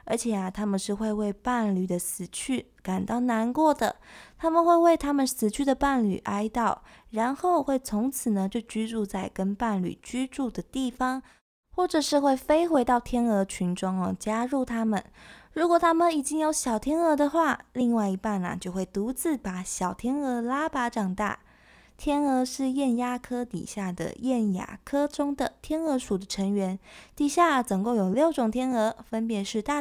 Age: 20-39